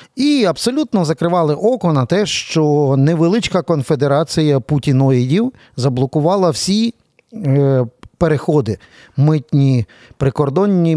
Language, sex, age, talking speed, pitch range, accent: Ukrainian, male, 40-59, 80 wpm, 125-165 Hz, native